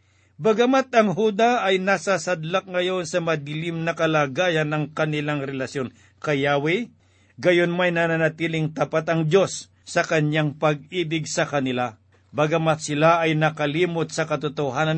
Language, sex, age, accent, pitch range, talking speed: Filipino, male, 50-69, native, 145-180 Hz, 130 wpm